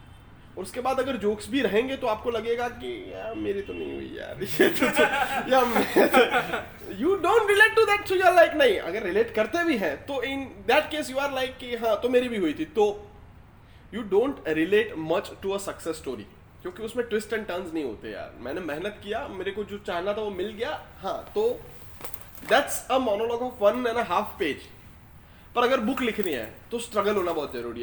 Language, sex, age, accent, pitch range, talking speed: Hindi, male, 20-39, native, 150-240 Hz, 180 wpm